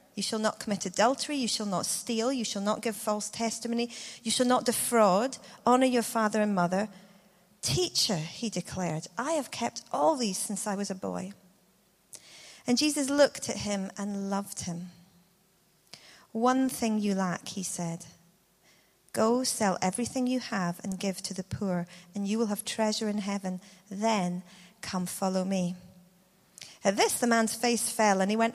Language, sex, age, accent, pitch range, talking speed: English, female, 40-59, British, 190-245 Hz, 170 wpm